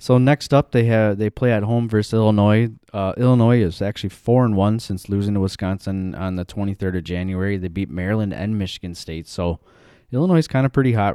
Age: 20-39